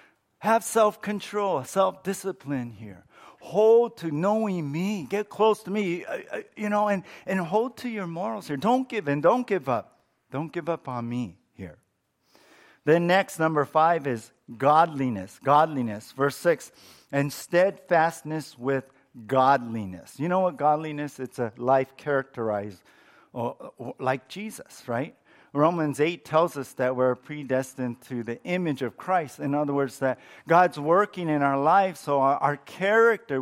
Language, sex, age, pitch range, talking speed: English, male, 50-69, 135-195 Hz, 145 wpm